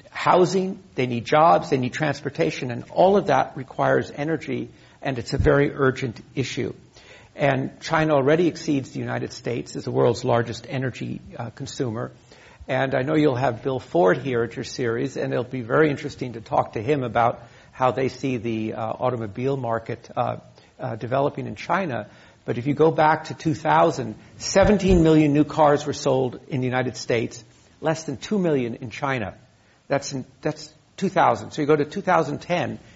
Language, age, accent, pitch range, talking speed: English, 60-79, American, 120-150 Hz, 180 wpm